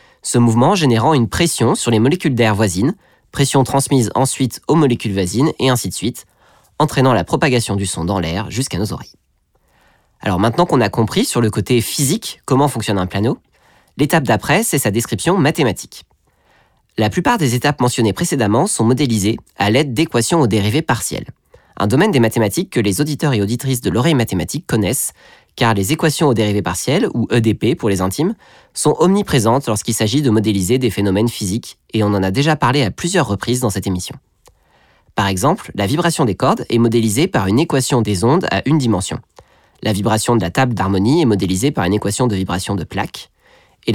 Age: 20-39